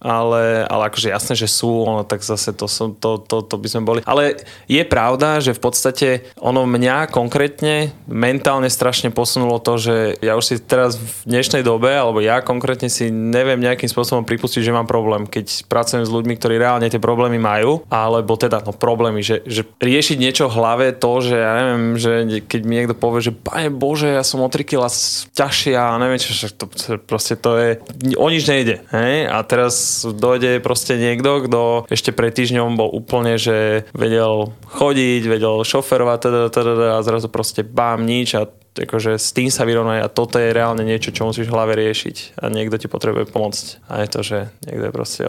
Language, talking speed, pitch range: Slovak, 195 wpm, 115-125 Hz